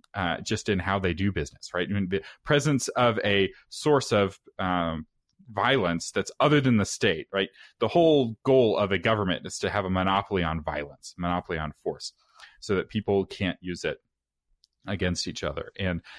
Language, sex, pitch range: English, male, 90-120 Hz